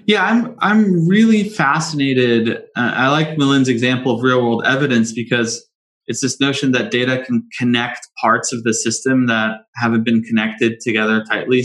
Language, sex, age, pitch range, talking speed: English, male, 20-39, 110-125 Hz, 165 wpm